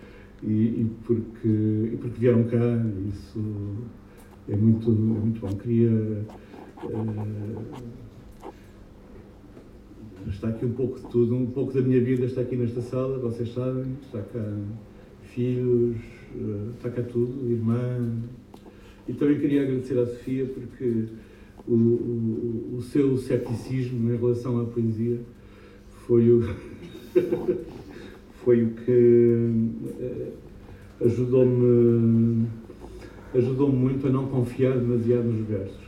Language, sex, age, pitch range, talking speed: Portuguese, male, 50-69, 105-120 Hz, 115 wpm